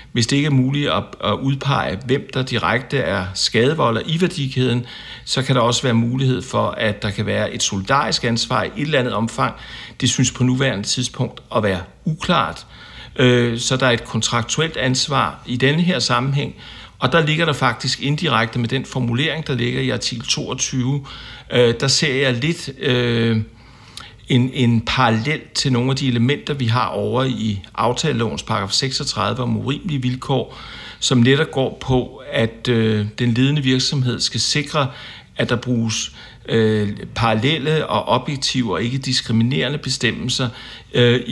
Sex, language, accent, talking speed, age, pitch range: male, Danish, native, 160 wpm, 60-79, 115-135 Hz